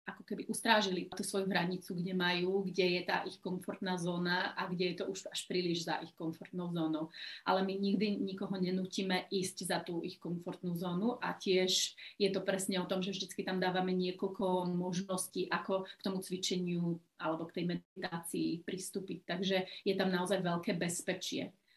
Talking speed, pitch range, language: 175 wpm, 180-205 Hz, Slovak